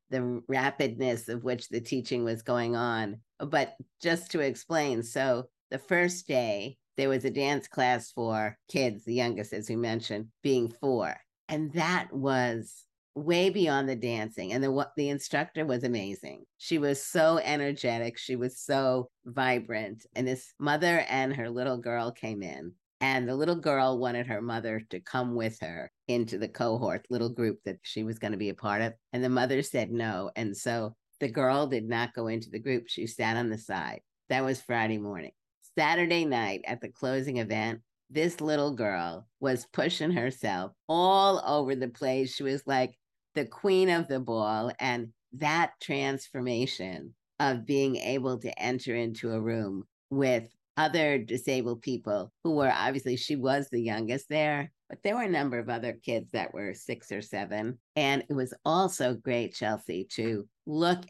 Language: English